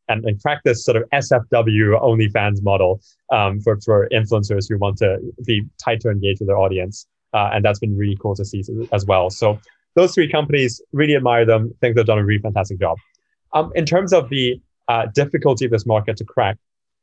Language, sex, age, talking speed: English, male, 20-39, 210 wpm